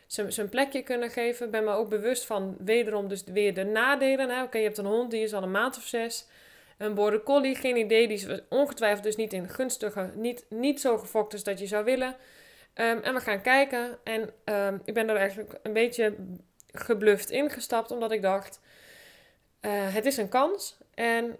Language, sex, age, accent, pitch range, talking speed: Dutch, female, 20-39, Dutch, 210-250 Hz, 205 wpm